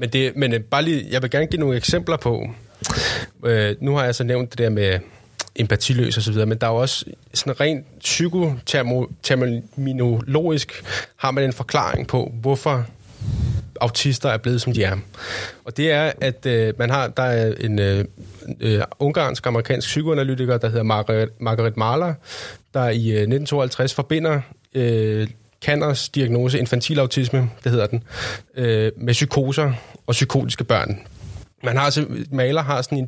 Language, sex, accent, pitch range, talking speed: Danish, male, native, 115-140 Hz, 150 wpm